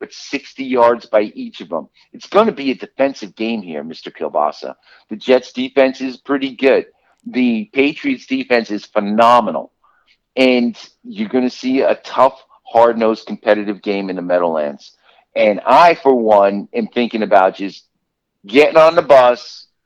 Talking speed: 160 wpm